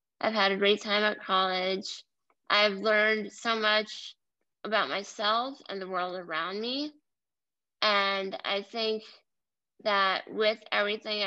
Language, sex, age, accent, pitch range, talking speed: English, female, 20-39, American, 195-235 Hz, 130 wpm